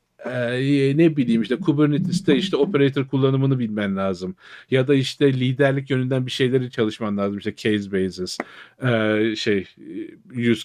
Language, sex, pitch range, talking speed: Turkish, male, 115-145 Hz, 140 wpm